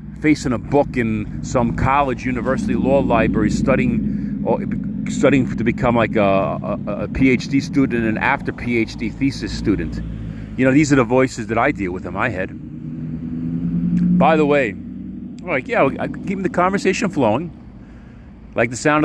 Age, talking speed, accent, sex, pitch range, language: 40-59, 165 wpm, American, male, 100-140 Hz, English